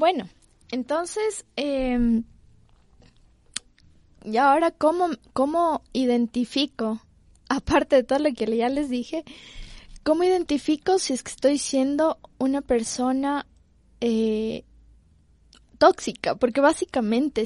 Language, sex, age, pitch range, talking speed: Spanish, female, 20-39, 235-295 Hz, 100 wpm